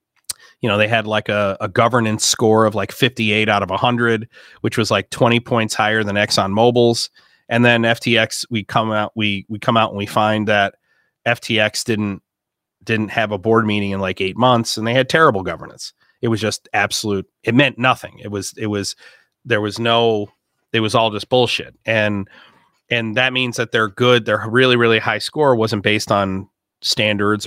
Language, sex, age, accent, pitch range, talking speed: English, male, 30-49, American, 105-120 Hz, 195 wpm